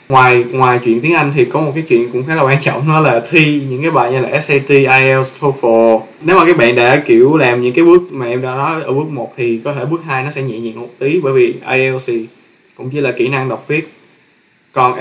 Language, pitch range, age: Vietnamese, 125-155 Hz, 20-39